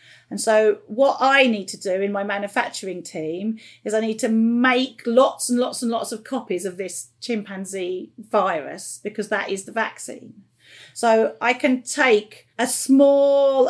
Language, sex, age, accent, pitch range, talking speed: English, female, 40-59, British, 200-240 Hz, 165 wpm